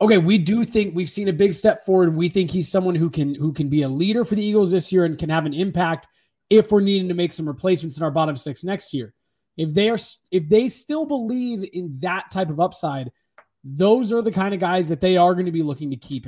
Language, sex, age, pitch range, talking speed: English, male, 20-39, 155-195 Hz, 260 wpm